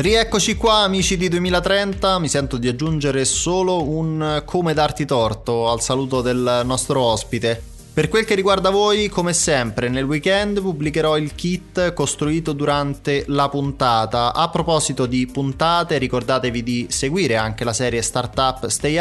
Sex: male